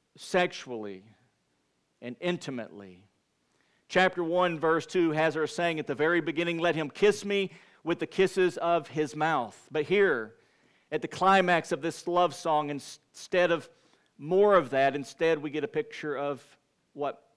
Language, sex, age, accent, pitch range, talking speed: English, male, 50-69, American, 135-180 Hz, 155 wpm